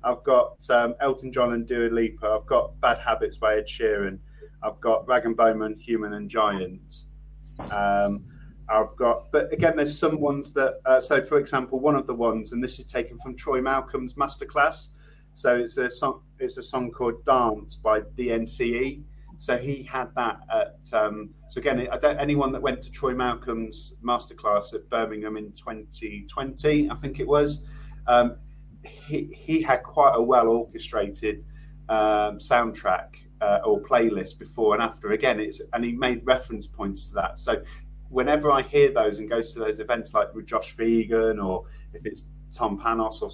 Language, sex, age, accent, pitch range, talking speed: English, male, 30-49, British, 110-145 Hz, 180 wpm